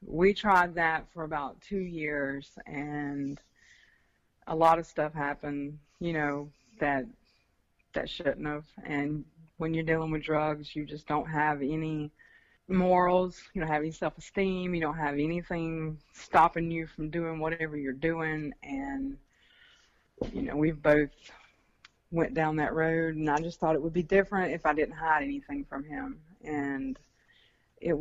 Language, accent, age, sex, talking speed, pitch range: English, American, 30-49, female, 160 wpm, 150-170 Hz